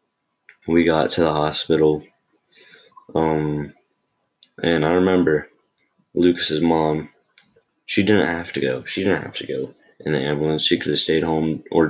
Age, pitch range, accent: 20-39, 75-80 Hz, American